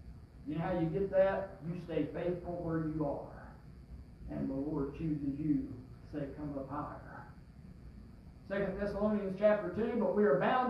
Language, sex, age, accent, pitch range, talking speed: English, male, 60-79, American, 155-215 Hz, 170 wpm